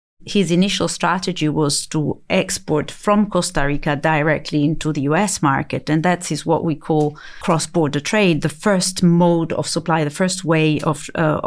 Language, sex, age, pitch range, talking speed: English, female, 40-59, 150-175 Hz, 165 wpm